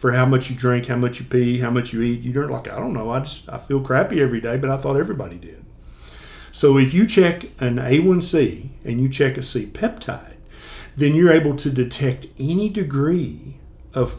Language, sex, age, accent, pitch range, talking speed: English, male, 50-69, American, 120-145 Hz, 210 wpm